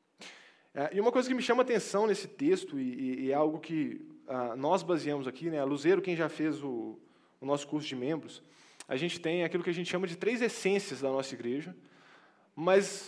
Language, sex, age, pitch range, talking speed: Portuguese, male, 20-39, 150-235 Hz, 205 wpm